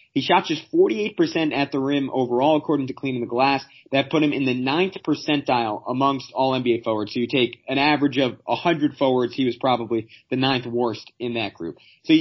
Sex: male